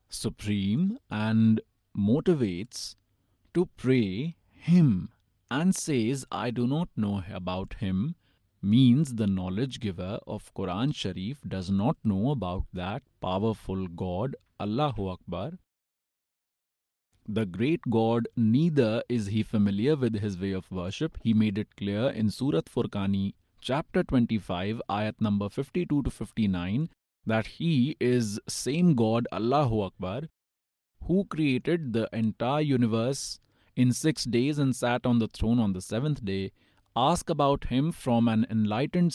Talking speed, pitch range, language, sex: 140 wpm, 100-130 Hz, Hindi, male